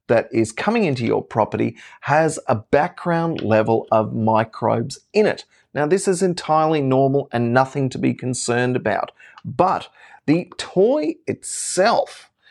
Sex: male